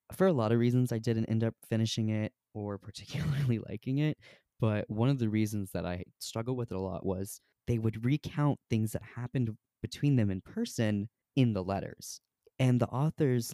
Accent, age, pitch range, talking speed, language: American, 20-39, 100-125 Hz, 195 wpm, English